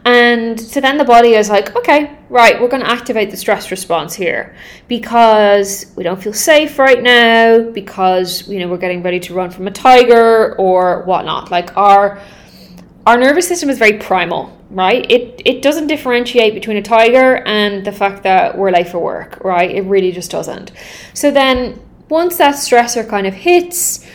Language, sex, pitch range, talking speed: English, female, 195-265 Hz, 185 wpm